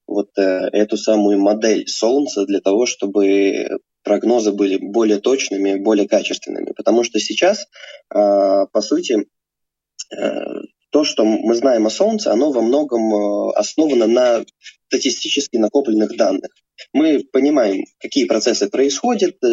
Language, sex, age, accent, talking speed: Russian, male, 20-39, native, 115 wpm